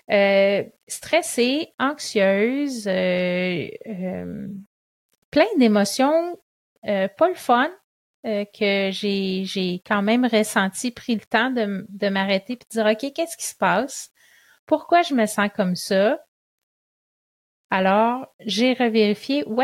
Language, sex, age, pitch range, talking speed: French, female, 30-49, 195-255 Hz, 130 wpm